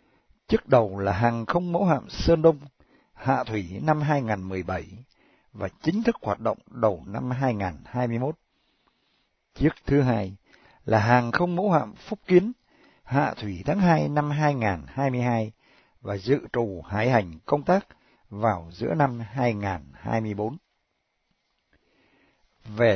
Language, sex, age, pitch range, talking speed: Vietnamese, male, 60-79, 105-145 Hz, 130 wpm